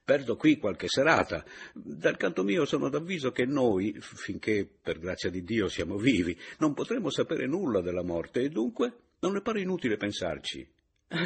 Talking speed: 165 wpm